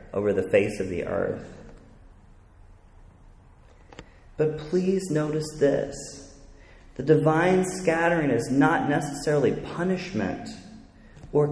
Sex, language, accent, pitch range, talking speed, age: male, English, American, 110-155 Hz, 95 wpm, 30-49